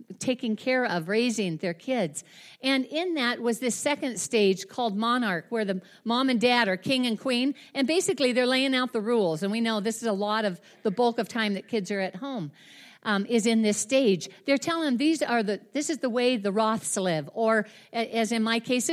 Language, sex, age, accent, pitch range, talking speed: English, female, 50-69, American, 190-255 Hz, 225 wpm